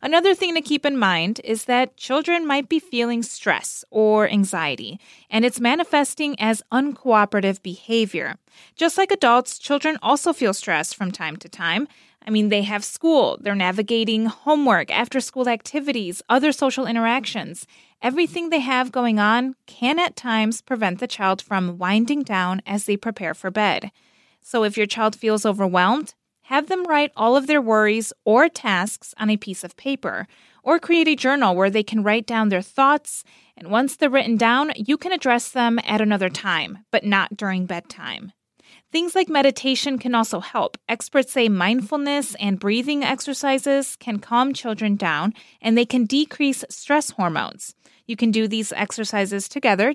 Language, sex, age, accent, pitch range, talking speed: English, female, 20-39, American, 205-275 Hz, 165 wpm